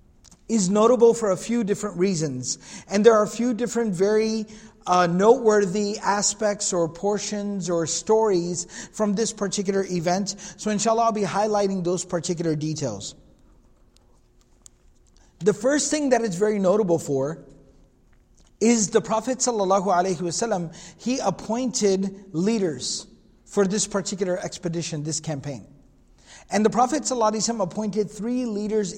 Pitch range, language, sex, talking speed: 175-215 Hz, English, male, 125 wpm